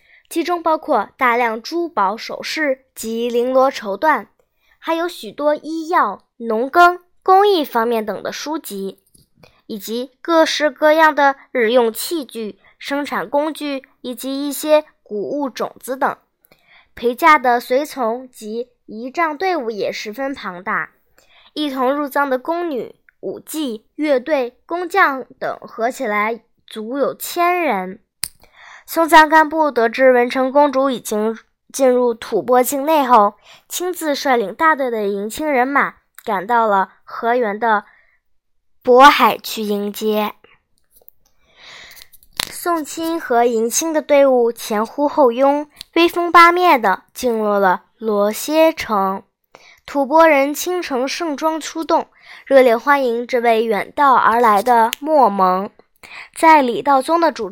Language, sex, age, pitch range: Chinese, male, 10-29, 225-310 Hz